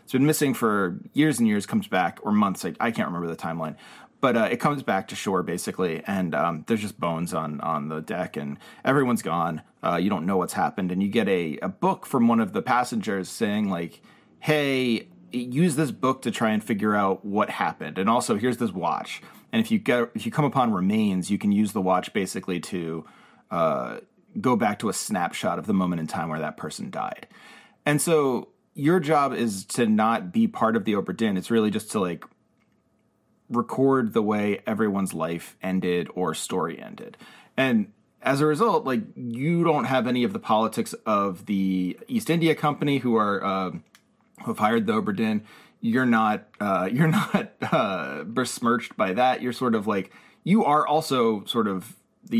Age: 30-49